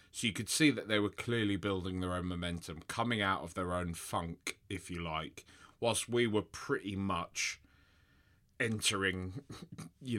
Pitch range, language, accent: 90-110 Hz, English, British